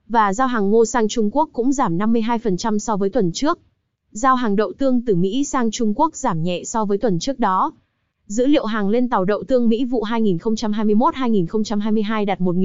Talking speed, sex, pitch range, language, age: 195 wpm, female, 200-250 Hz, Vietnamese, 20-39